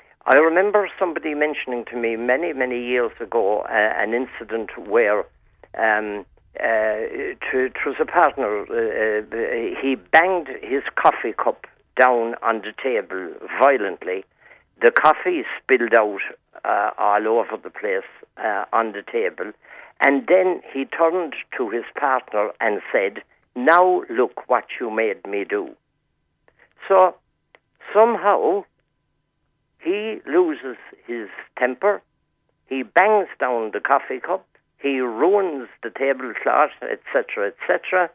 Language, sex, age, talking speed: English, male, 60-79, 125 wpm